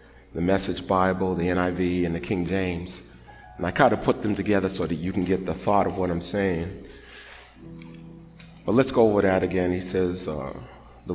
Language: English